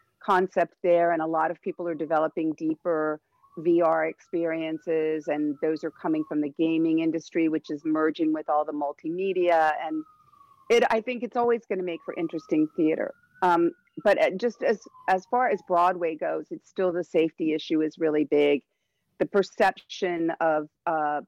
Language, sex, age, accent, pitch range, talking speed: English, female, 50-69, American, 160-220 Hz, 170 wpm